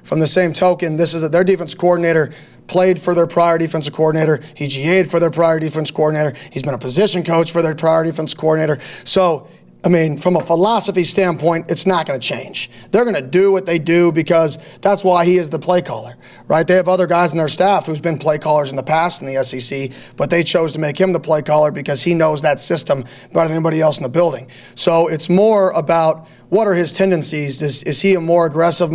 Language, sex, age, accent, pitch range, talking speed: English, male, 30-49, American, 150-175 Hz, 230 wpm